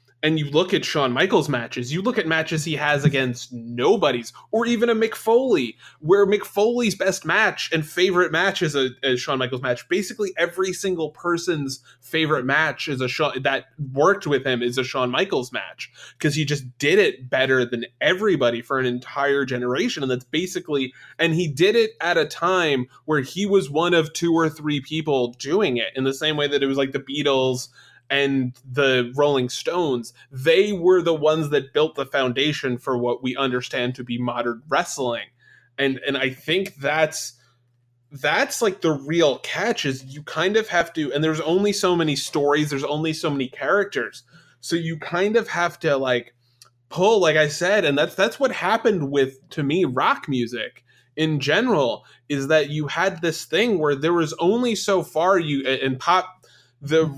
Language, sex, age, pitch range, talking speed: English, male, 20-39, 130-170 Hz, 190 wpm